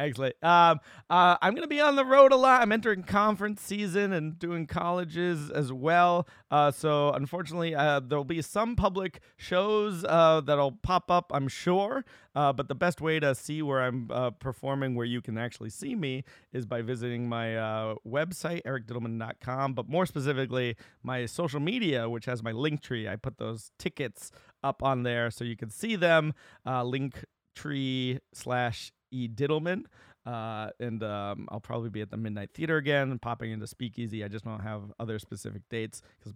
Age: 30-49